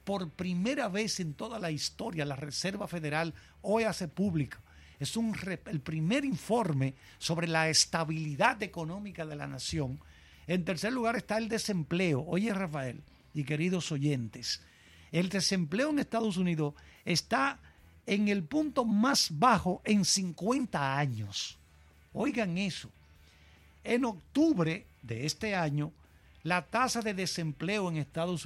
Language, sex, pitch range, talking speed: Spanish, male, 135-200 Hz, 130 wpm